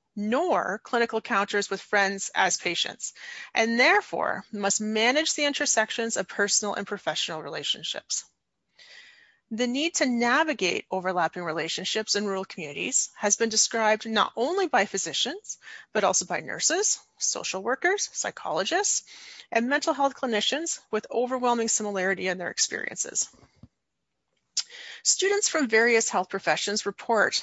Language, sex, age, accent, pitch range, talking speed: English, female, 30-49, American, 195-290 Hz, 125 wpm